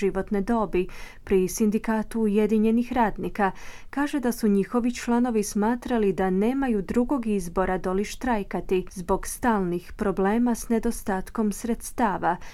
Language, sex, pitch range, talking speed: Croatian, female, 190-230 Hz, 115 wpm